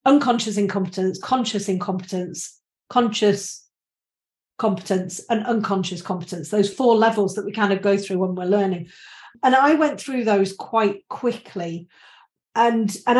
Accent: British